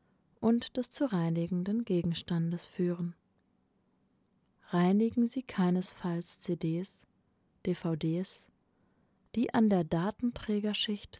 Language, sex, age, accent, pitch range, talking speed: German, female, 20-39, German, 170-210 Hz, 80 wpm